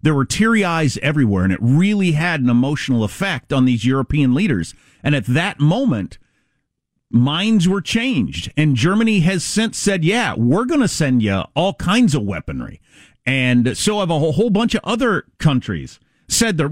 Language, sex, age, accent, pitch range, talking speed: English, male, 50-69, American, 130-210 Hz, 175 wpm